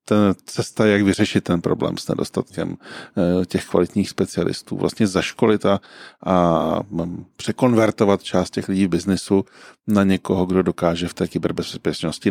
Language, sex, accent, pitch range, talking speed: Czech, male, native, 90-105 Hz, 135 wpm